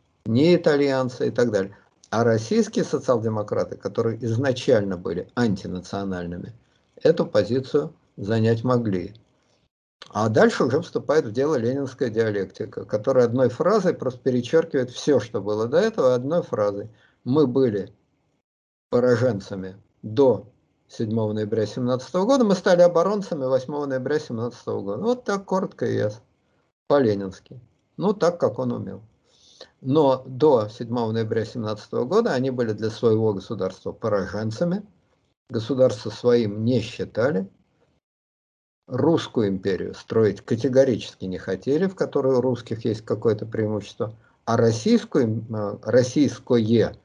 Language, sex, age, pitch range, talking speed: Russian, male, 50-69, 110-140 Hz, 120 wpm